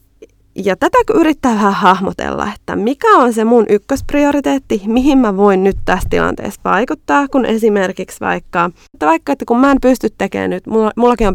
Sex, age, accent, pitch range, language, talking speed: female, 20-39, native, 185-250 Hz, Finnish, 165 wpm